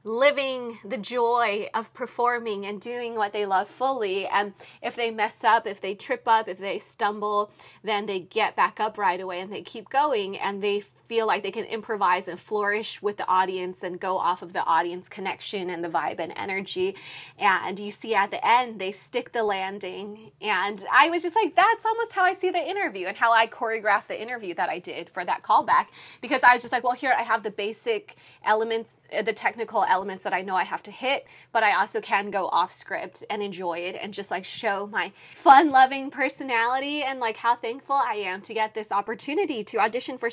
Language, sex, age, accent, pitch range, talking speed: English, female, 20-39, American, 195-250 Hz, 215 wpm